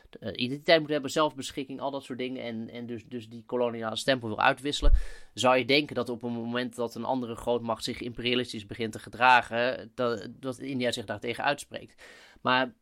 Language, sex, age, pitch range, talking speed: Dutch, male, 20-39, 120-140 Hz, 190 wpm